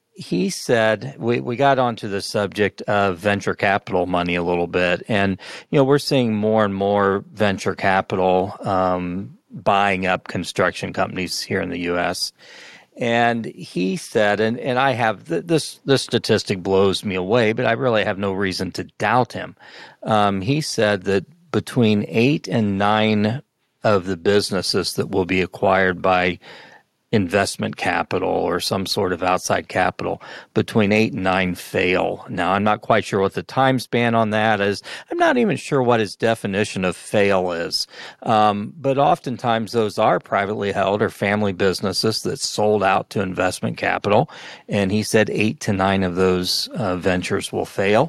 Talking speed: 170 wpm